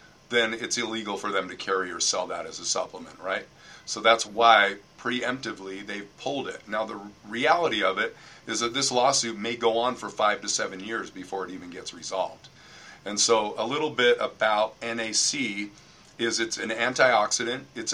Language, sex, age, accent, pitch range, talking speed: English, male, 40-59, American, 105-115 Hz, 185 wpm